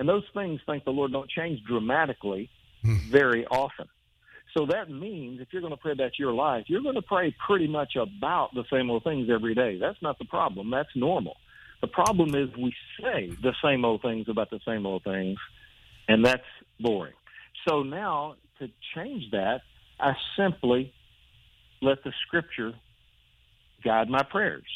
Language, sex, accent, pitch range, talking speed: English, male, American, 115-140 Hz, 170 wpm